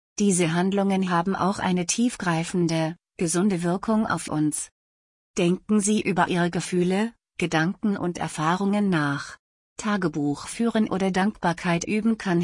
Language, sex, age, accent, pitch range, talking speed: German, female, 30-49, German, 170-205 Hz, 120 wpm